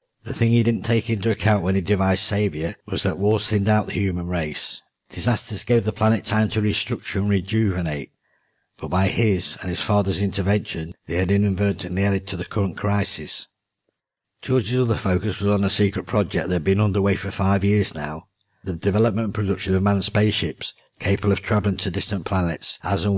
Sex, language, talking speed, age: male, English, 190 wpm, 60-79